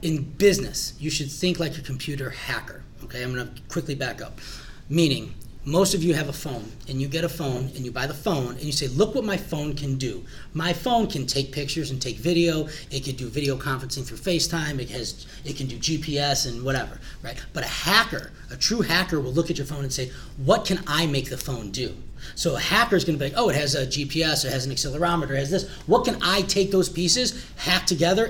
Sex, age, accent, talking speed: male, 30-49, American, 240 wpm